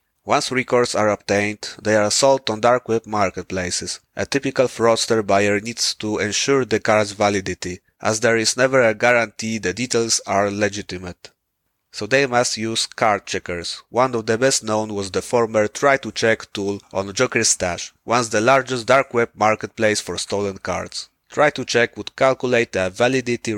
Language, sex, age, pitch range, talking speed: English, male, 30-49, 100-120 Hz, 175 wpm